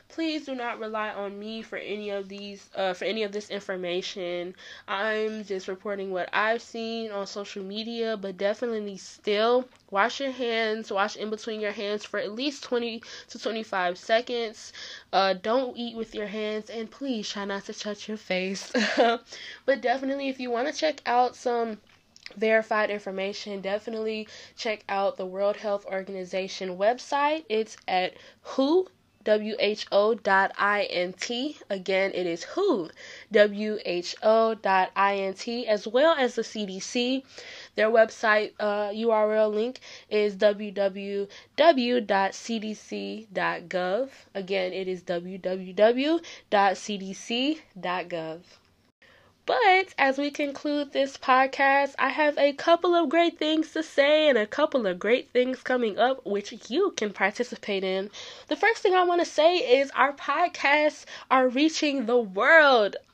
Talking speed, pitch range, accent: 135 wpm, 200-260 Hz, American